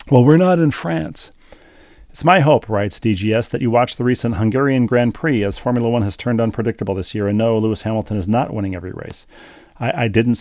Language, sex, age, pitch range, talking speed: English, male, 40-59, 100-120 Hz, 220 wpm